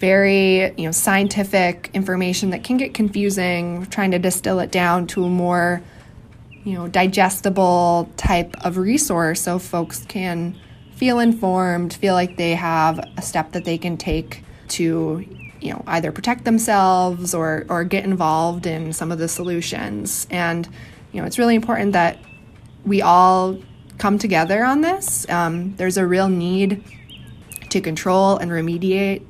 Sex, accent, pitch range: female, American, 170-200 Hz